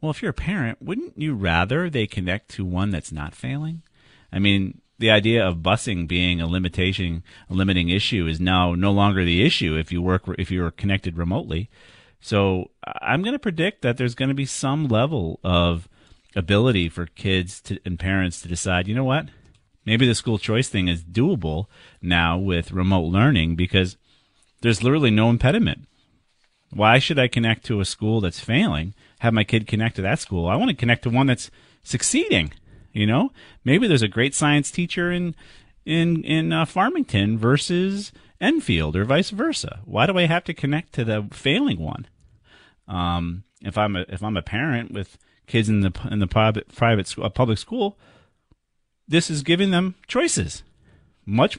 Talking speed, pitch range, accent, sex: 185 wpm, 95-135 Hz, American, male